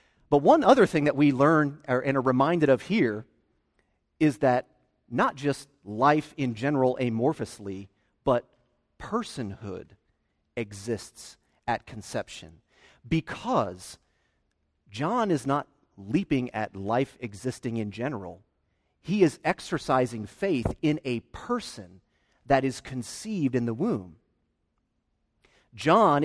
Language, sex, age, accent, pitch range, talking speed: English, male, 30-49, American, 115-170 Hz, 110 wpm